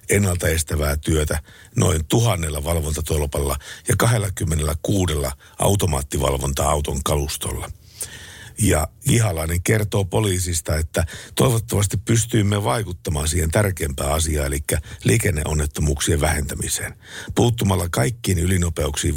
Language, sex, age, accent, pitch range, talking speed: Finnish, male, 60-79, native, 80-105 Hz, 80 wpm